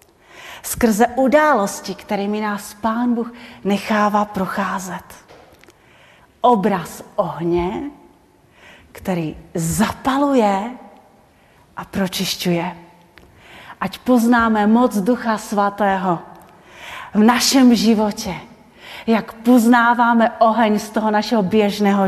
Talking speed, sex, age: 80 wpm, female, 30-49